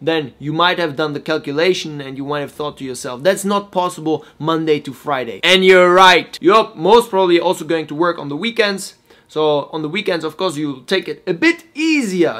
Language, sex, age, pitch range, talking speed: English, male, 20-39, 150-190 Hz, 225 wpm